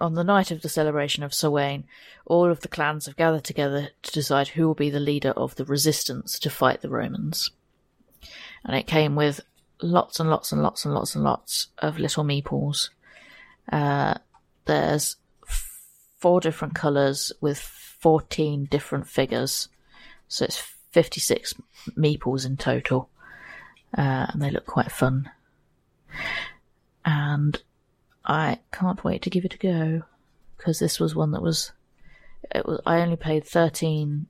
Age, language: 30-49, English